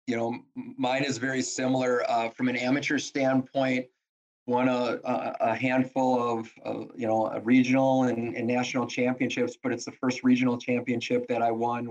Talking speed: 165 wpm